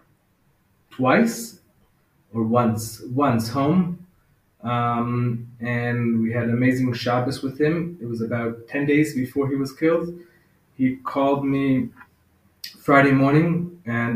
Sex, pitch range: male, 120-140 Hz